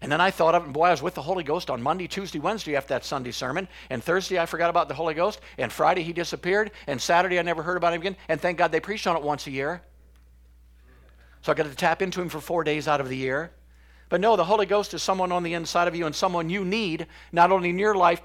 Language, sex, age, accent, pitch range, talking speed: English, male, 50-69, American, 150-190 Hz, 285 wpm